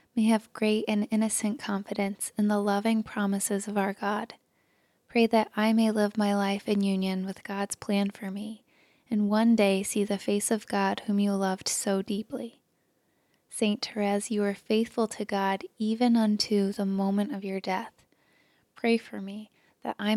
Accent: American